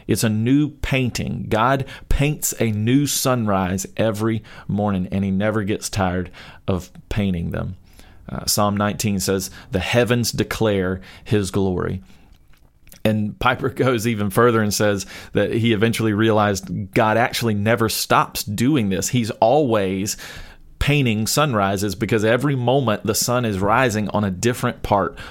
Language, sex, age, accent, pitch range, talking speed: English, male, 30-49, American, 100-120 Hz, 140 wpm